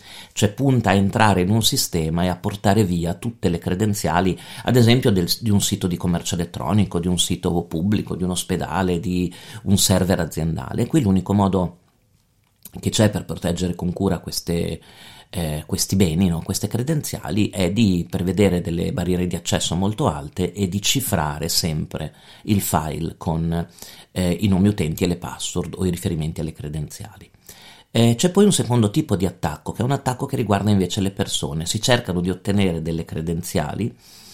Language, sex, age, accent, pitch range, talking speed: Italian, male, 40-59, native, 90-110 Hz, 175 wpm